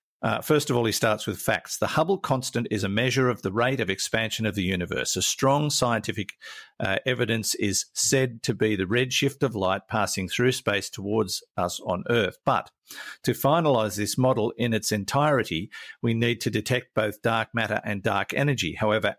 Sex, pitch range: male, 105-130 Hz